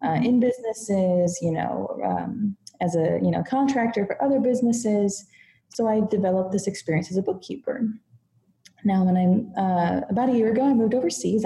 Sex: female